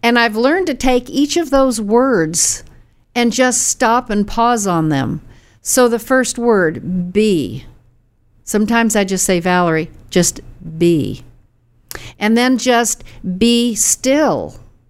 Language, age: English, 60-79